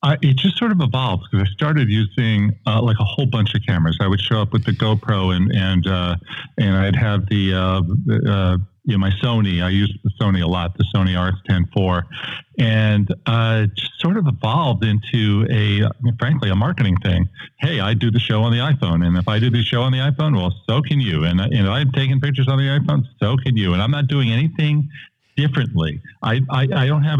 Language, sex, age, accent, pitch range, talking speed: English, male, 50-69, American, 95-130 Hz, 240 wpm